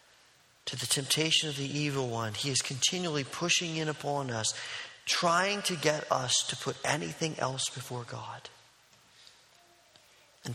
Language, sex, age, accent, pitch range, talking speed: English, male, 40-59, American, 145-185 Hz, 140 wpm